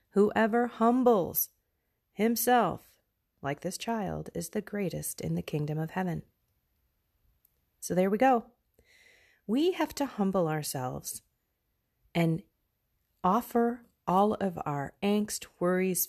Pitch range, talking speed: 155-220 Hz, 110 wpm